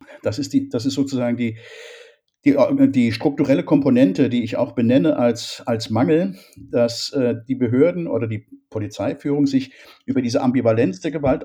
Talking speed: 160 wpm